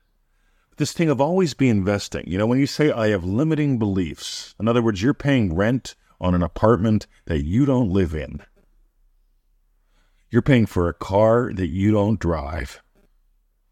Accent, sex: American, male